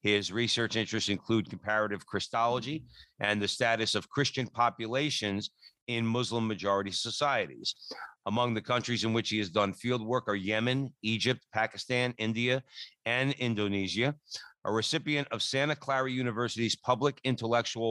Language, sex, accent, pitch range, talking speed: English, male, American, 110-140 Hz, 135 wpm